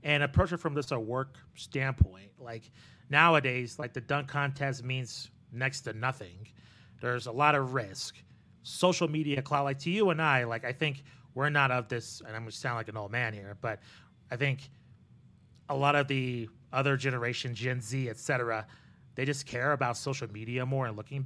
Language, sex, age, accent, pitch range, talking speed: English, male, 30-49, American, 120-145 Hz, 195 wpm